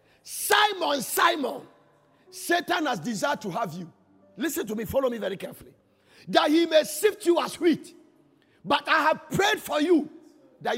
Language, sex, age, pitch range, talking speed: English, male, 50-69, 230-335 Hz, 160 wpm